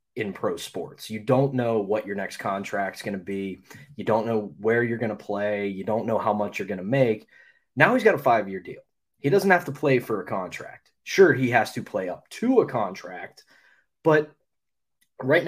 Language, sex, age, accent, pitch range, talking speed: English, male, 20-39, American, 105-140 Hz, 215 wpm